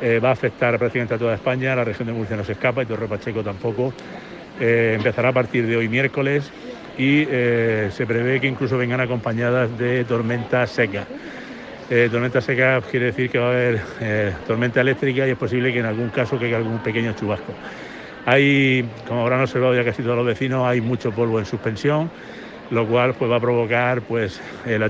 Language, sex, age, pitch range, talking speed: Spanish, male, 60-79, 115-125 Hz, 200 wpm